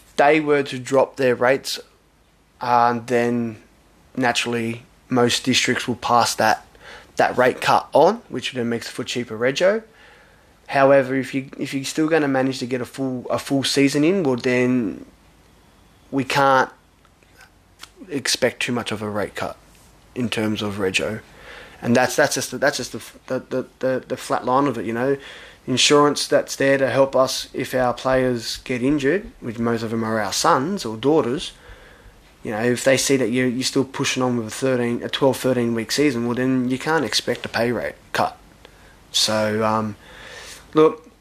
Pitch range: 120-140 Hz